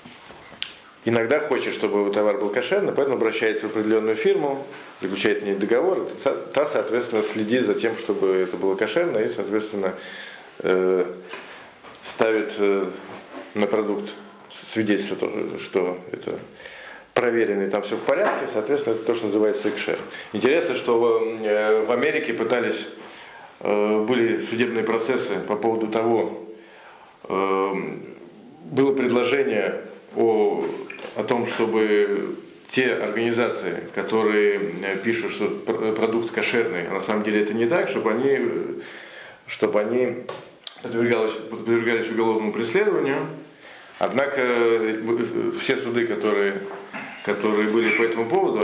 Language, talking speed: Russian, 110 wpm